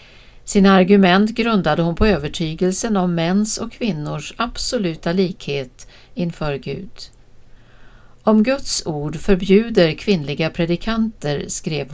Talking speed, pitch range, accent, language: 105 wpm, 160-210 Hz, native, Swedish